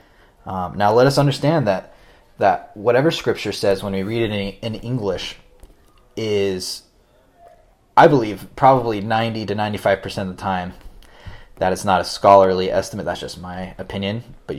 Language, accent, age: English, American, 20-39